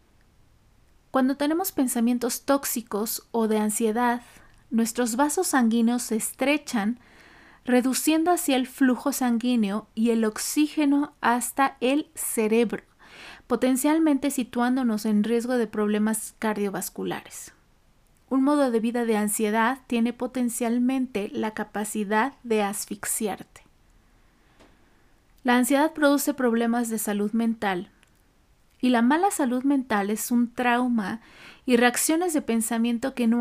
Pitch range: 220-265 Hz